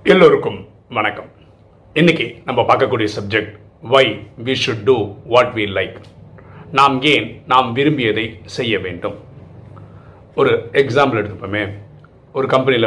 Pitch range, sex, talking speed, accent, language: 110-150 Hz, male, 110 wpm, native, Tamil